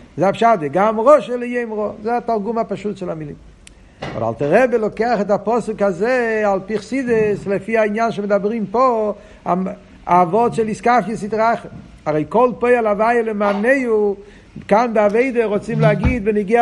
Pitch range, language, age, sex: 165-220 Hz, Hebrew, 50-69, male